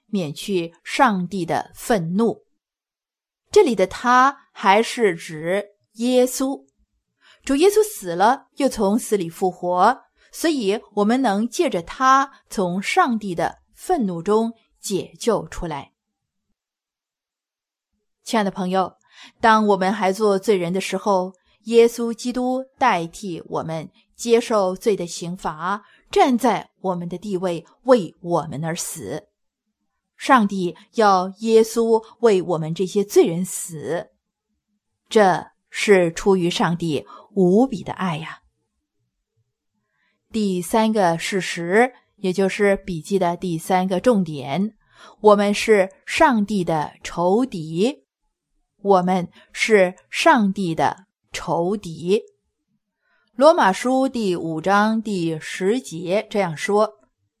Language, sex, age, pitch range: English, female, 20-39, 180-230 Hz